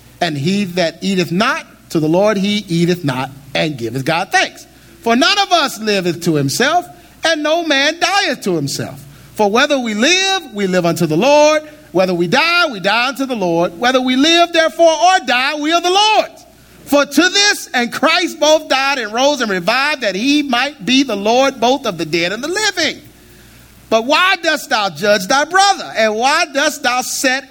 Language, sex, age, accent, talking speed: English, male, 50-69, American, 200 wpm